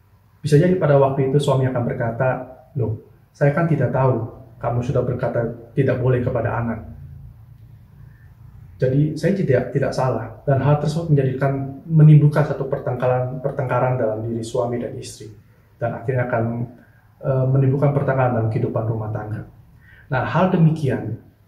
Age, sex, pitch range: 30-49, male, 120-140 Hz